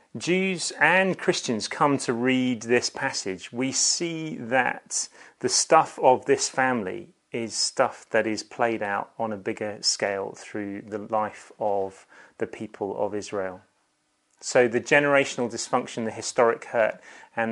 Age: 30-49